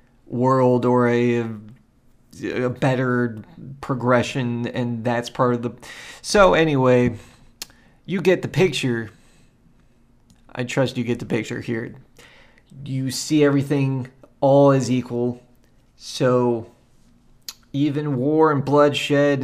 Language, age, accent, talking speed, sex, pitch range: English, 30-49, American, 110 wpm, male, 120-145 Hz